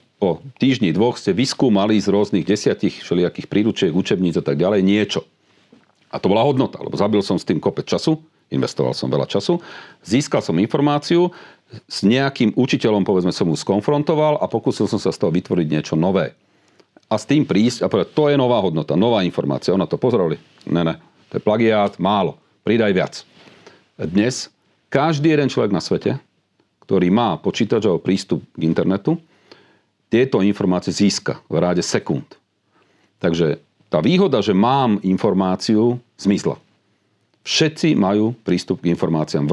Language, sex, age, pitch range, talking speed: Slovak, male, 40-59, 95-140 Hz, 155 wpm